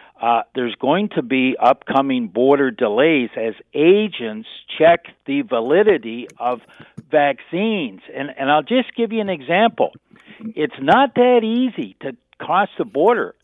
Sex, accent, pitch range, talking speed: male, American, 130-220 Hz, 140 wpm